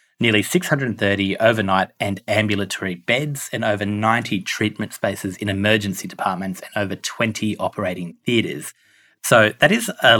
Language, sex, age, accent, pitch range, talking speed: English, male, 30-49, Australian, 100-130 Hz, 135 wpm